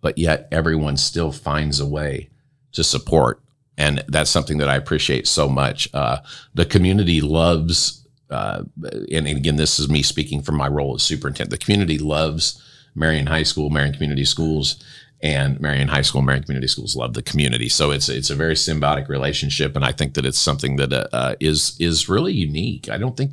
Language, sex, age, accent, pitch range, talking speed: English, male, 50-69, American, 75-90 Hz, 195 wpm